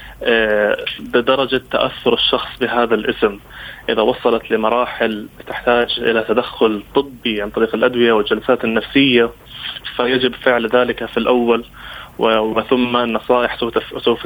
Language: Arabic